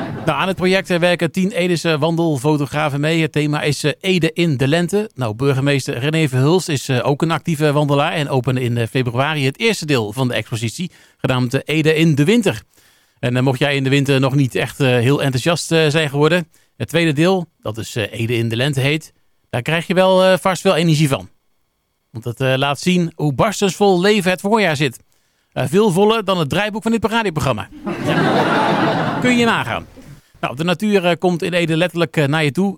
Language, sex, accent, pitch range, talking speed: Dutch, male, Dutch, 135-175 Hz, 190 wpm